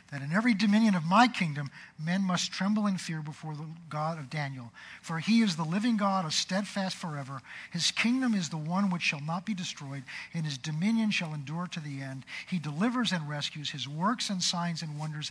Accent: American